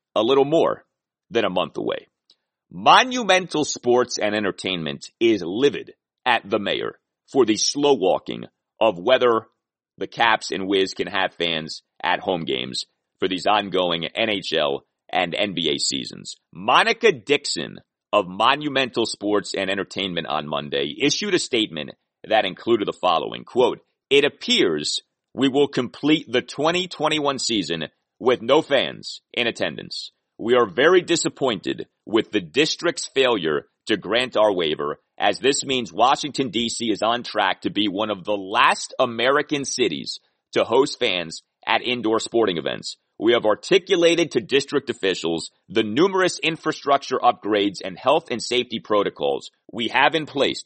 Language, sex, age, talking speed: English, male, 40-59, 145 wpm